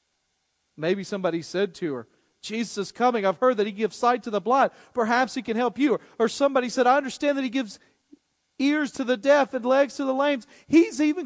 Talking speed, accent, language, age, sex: 220 wpm, American, English, 40-59, male